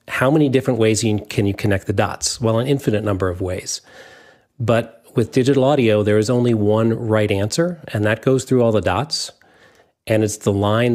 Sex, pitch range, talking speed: male, 100-120 Hz, 195 wpm